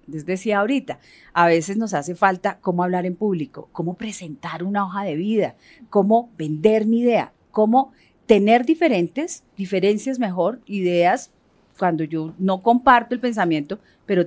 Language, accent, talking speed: Spanish, Colombian, 145 wpm